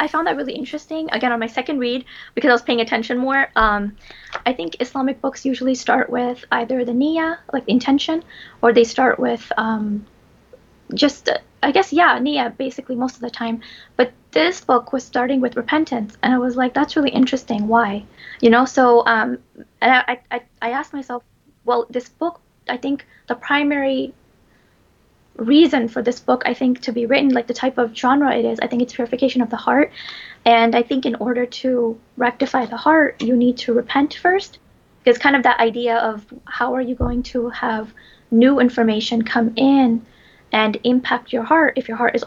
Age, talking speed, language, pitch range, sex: 20-39, 195 wpm, English, 235-270 Hz, female